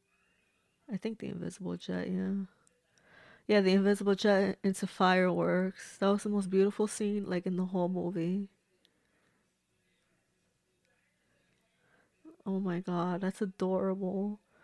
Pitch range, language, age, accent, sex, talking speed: 180-215 Hz, English, 20-39, American, female, 115 wpm